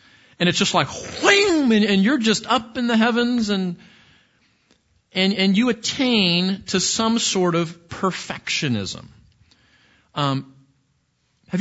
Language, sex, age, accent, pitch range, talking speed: English, male, 40-59, American, 120-165 Hz, 125 wpm